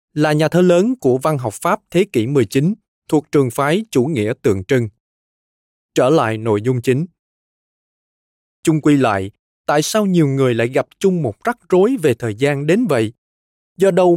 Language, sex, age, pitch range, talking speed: Vietnamese, male, 20-39, 115-170 Hz, 180 wpm